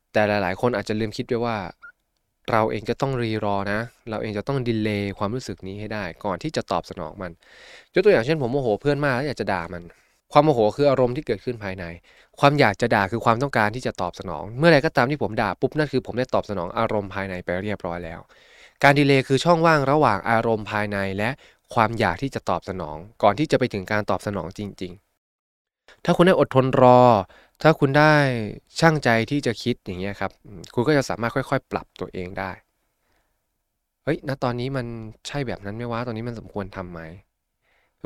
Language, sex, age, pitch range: Thai, male, 20-39, 100-135 Hz